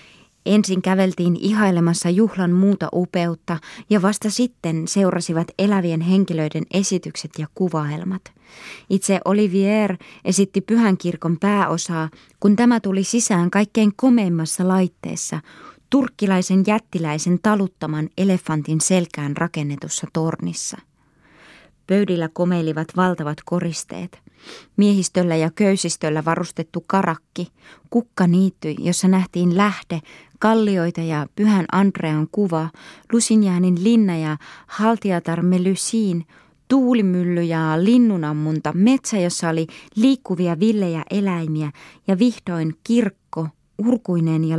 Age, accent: 20-39, native